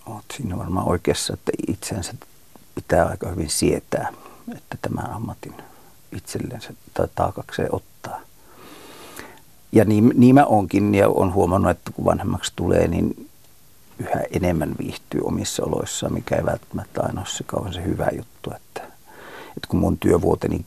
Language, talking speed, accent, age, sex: Finnish, 140 wpm, native, 50-69, male